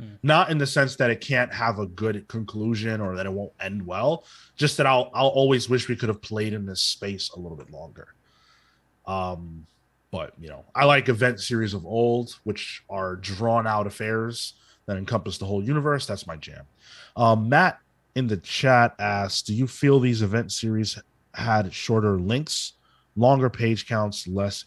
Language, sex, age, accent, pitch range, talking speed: English, male, 30-49, American, 100-130 Hz, 185 wpm